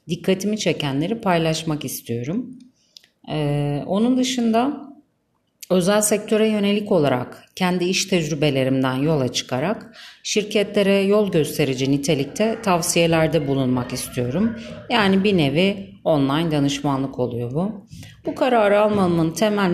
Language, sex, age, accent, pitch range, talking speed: Turkish, female, 40-59, native, 150-210 Hz, 105 wpm